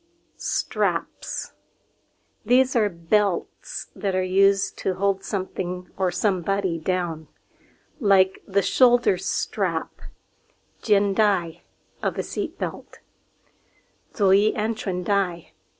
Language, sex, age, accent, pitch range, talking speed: English, female, 40-59, American, 195-260 Hz, 100 wpm